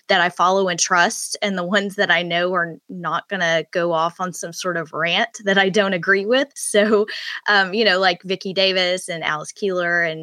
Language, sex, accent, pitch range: English, female, American, 170-195 Hz